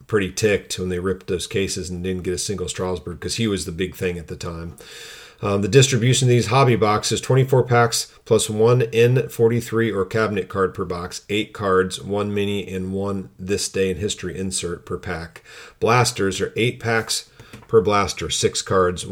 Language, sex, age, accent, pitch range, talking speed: English, male, 40-59, American, 90-110 Hz, 190 wpm